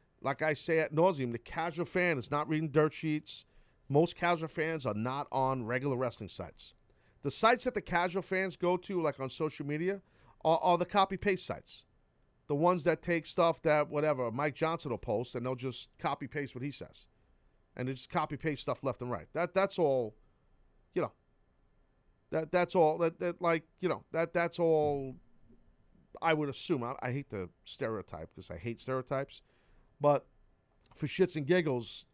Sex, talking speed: male, 190 wpm